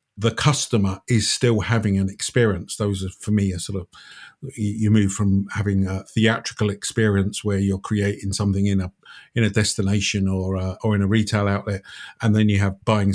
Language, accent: English, British